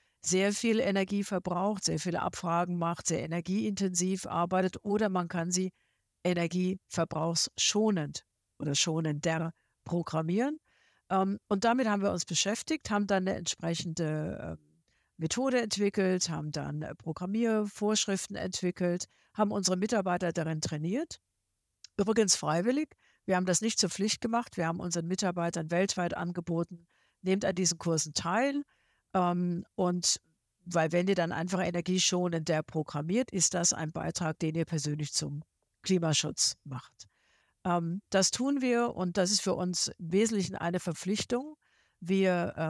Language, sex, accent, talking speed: German, female, German, 130 wpm